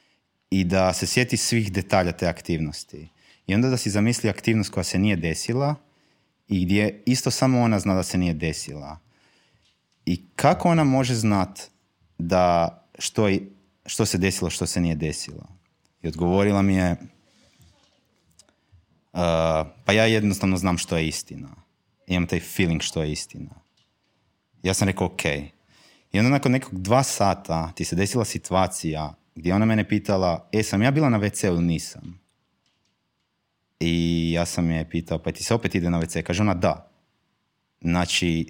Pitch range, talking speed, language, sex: 85-110 Hz, 165 wpm, Croatian, male